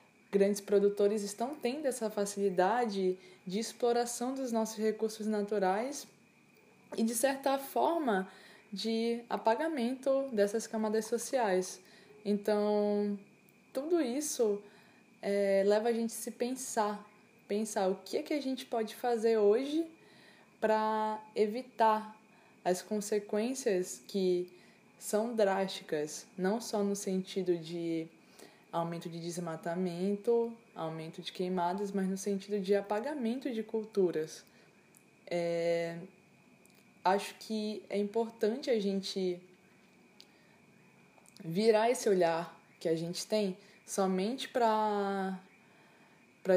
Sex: female